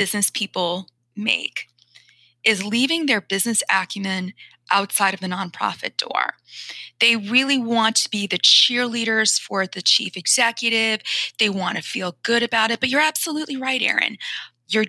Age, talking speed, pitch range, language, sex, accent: 20-39, 150 wpm, 205-240 Hz, English, female, American